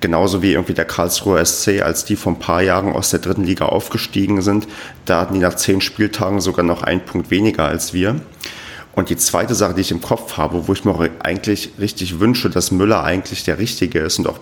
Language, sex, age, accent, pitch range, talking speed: German, male, 40-59, German, 85-105 Hz, 225 wpm